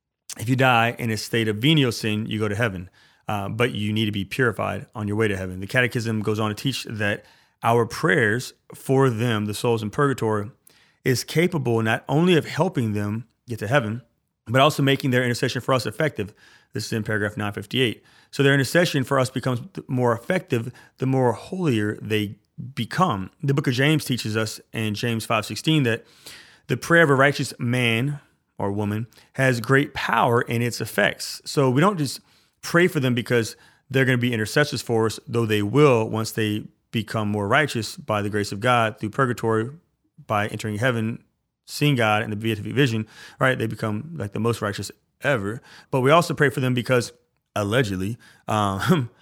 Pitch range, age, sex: 110-135 Hz, 30-49, male